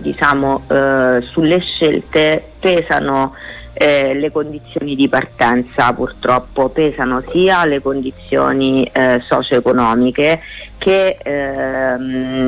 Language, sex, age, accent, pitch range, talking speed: Italian, female, 30-49, native, 125-140 Hz, 95 wpm